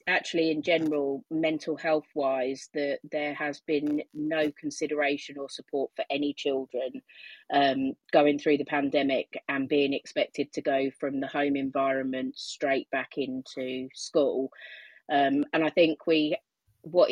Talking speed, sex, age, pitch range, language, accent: 145 wpm, female, 30-49, 140-160 Hz, English, British